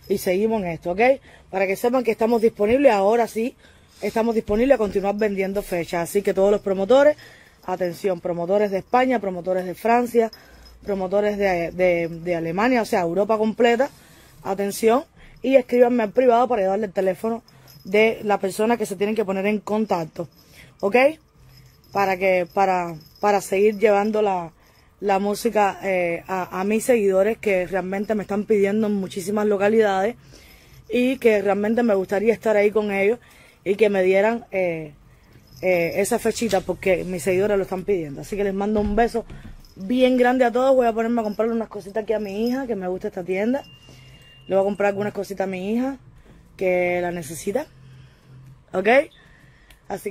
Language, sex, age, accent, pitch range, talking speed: Spanish, female, 20-39, American, 185-225 Hz, 175 wpm